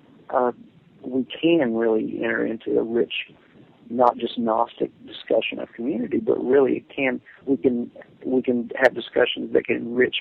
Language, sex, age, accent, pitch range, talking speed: English, male, 40-59, American, 115-135 Hz, 155 wpm